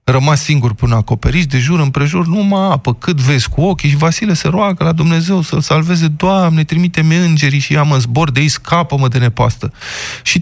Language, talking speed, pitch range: Romanian, 190 wpm, 130-185 Hz